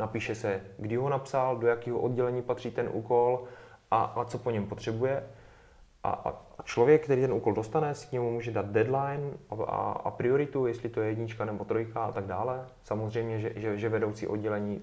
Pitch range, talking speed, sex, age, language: 115-125 Hz, 200 wpm, male, 20-39, Czech